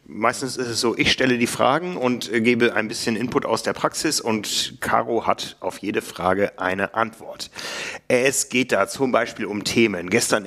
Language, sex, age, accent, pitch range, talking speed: German, male, 40-59, German, 100-120 Hz, 185 wpm